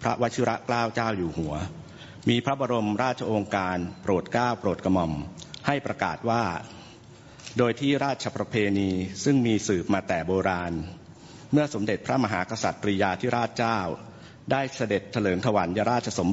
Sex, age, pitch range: male, 60-79, 100-125 Hz